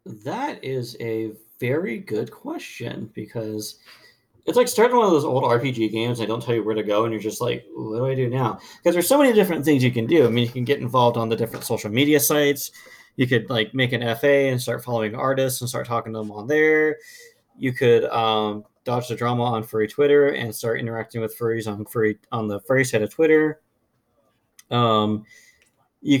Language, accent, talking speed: English, American, 215 wpm